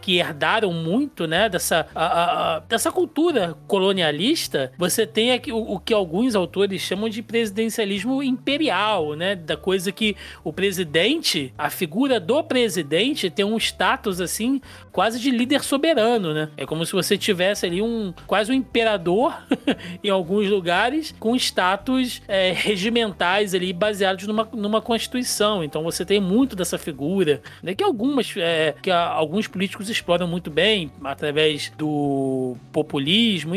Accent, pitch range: Brazilian, 170-235 Hz